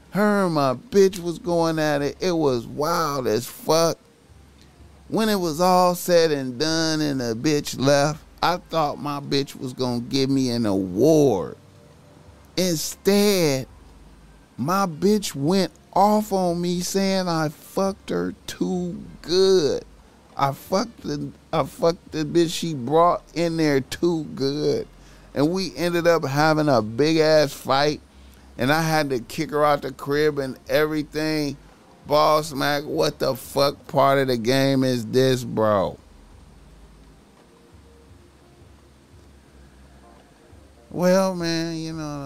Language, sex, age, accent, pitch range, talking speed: English, male, 30-49, American, 110-165 Hz, 135 wpm